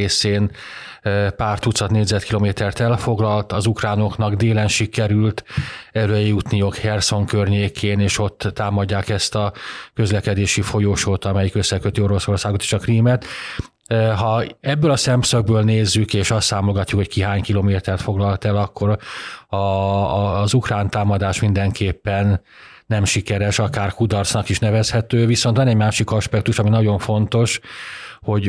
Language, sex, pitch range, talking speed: Hungarian, male, 100-110 Hz, 130 wpm